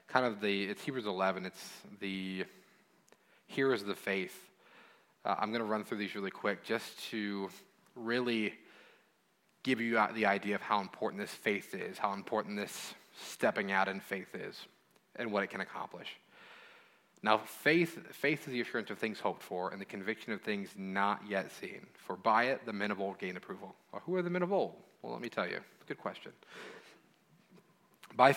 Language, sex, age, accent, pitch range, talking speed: English, male, 30-49, American, 100-120 Hz, 190 wpm